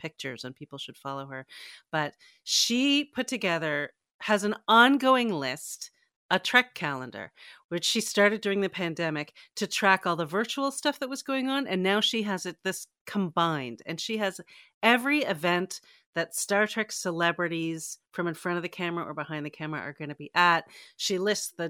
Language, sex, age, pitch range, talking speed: English, female, 40-59, 165-225 Hz, 185 wpm